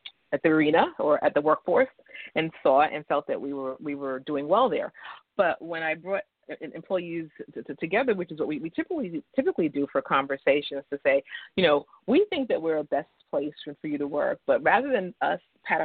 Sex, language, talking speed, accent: female, English, 220 wpm, American